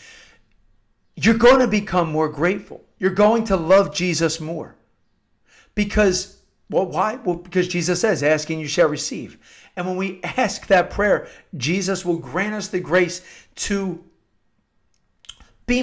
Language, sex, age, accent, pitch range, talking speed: English, male, 50-69, American, 180-230 Hz, 140 wpm